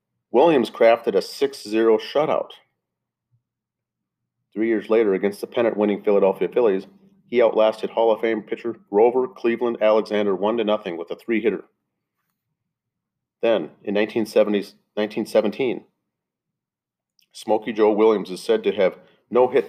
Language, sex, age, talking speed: English, male, 40-59, 115 wpm